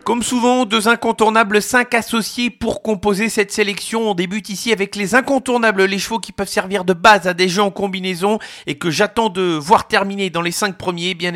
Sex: male